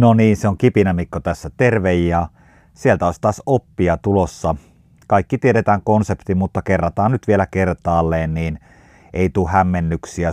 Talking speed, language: 145 wpm, Finnish